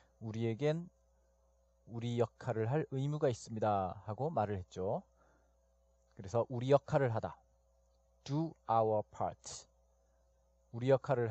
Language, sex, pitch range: Korean, male, 95-140 Hz